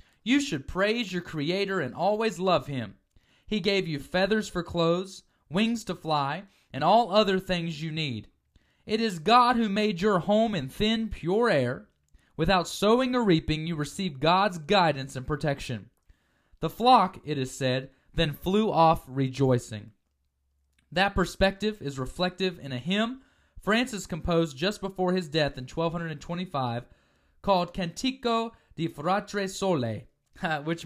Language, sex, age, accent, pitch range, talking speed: English, male, 20-39, American, 140-200 Hz, 145 wpm